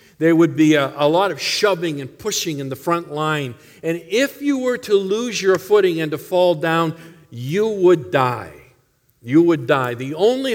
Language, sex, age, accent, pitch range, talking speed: English, male, 50-69, American, 145-195 Hz, 195 wpm